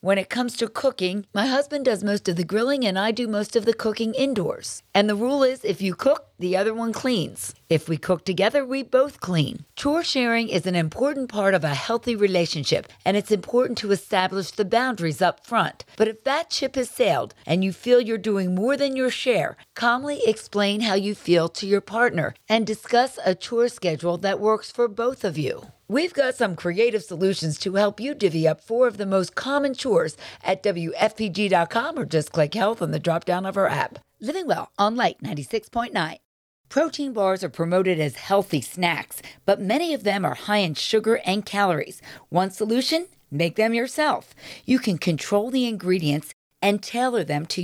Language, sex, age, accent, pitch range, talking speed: English, female, 50-69, American, 180-240 Hz, 195 wpm